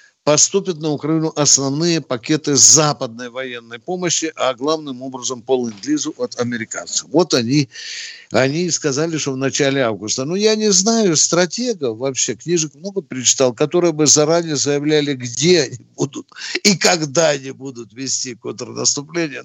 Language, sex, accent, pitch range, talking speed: Russian, male, native, 125-170 Hz, 140 wpm